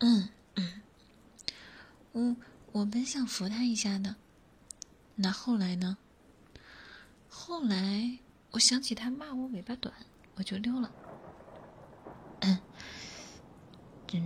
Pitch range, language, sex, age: 200-250 Hz, Chinese, female, 30-49